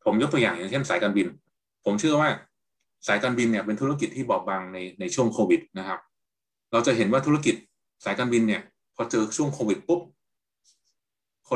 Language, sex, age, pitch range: Thai, male, 20-39, 105-125 Hz